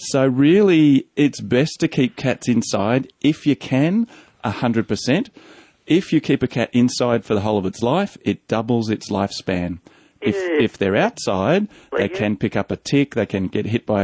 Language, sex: English, male